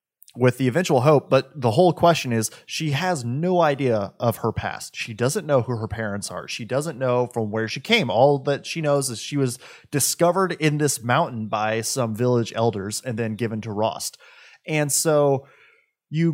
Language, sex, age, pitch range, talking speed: English, male, 20-39, 115-155 Hz, 195 wpm